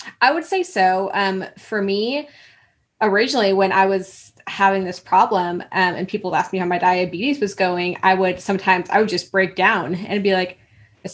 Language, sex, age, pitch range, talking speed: English, female, 20-39, 180-210 Hz, 195 wpm